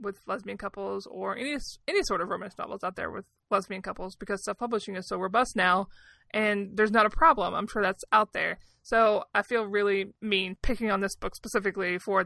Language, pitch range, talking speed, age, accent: English, 185-220 Hz, 205 wpm, 20-39, American